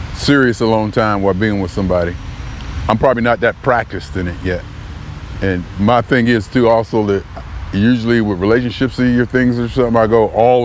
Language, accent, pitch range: English, American, 90-115 Hz